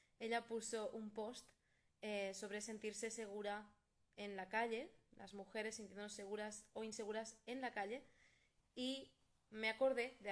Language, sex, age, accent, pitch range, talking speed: Spanish, female, 20-39, Spanish, 205-230 Hz, 140 wpm